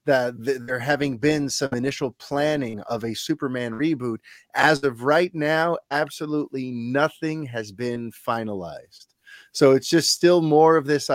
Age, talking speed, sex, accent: 30-49, 145 wpm, male, American